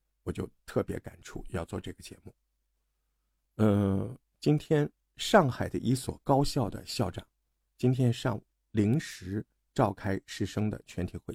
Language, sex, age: Chinese, male, 50-69